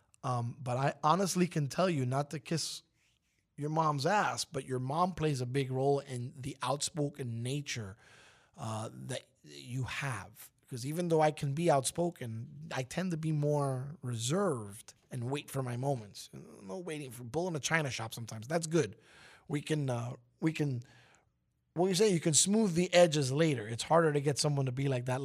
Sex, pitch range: male, 120-150 Hz